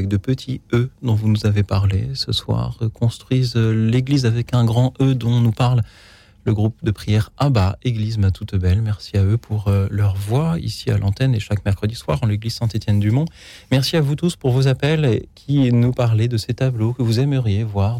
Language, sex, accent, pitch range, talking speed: French, male, French, 105-130 Hz, 215 wpm